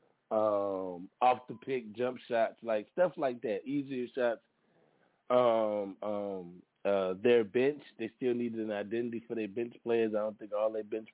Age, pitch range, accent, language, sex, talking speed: 20-39, 105-135 Hz, American, English, male, 170 wpm